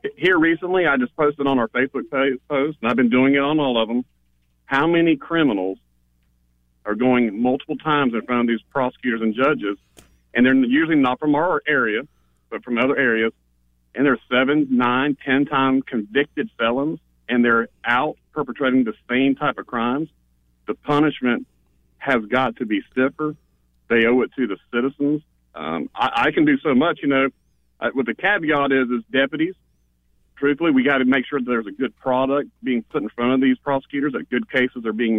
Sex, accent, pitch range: male, American, 110-135 Hz